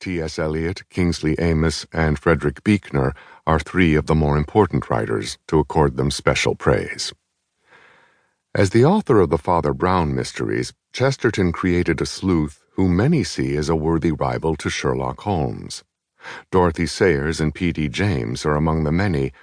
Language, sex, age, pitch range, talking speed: English, male, 50-69, 75-90 Hz, 155 wpm